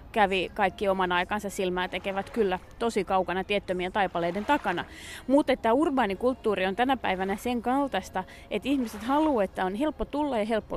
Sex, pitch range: female, 195-245 Hz